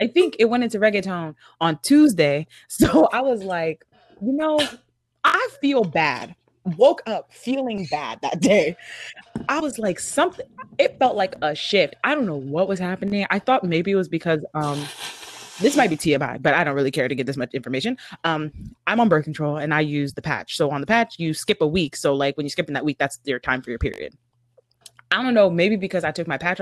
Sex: female